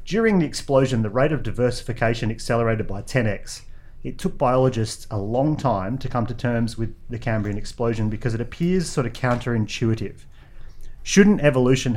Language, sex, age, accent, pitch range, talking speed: English, male, 30-49, Australian, 110-130 Hz, 160 wpm